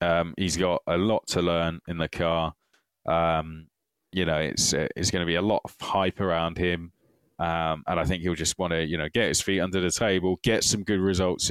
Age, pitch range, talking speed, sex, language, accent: 20-39, 80-95 Hz, 230 wpm, male, English, British